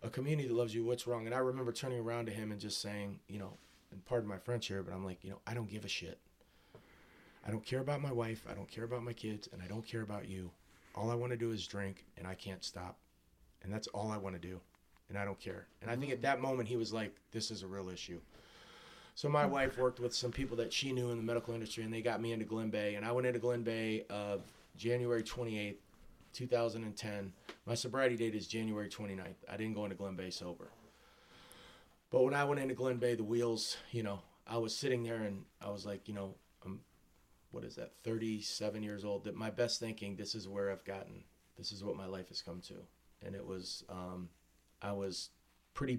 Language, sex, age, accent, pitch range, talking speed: English, male, 30-49, American, 95-120 Hz, 240 wpm